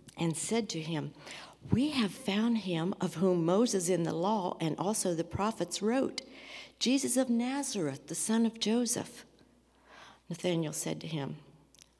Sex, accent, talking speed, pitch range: female, American, 150 wpm, 155-195 Hz